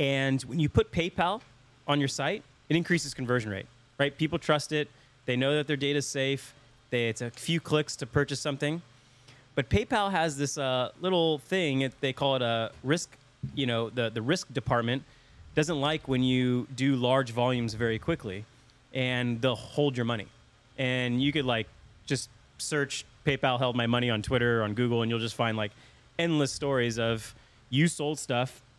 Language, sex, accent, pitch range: English, male, American, 120-145 Hz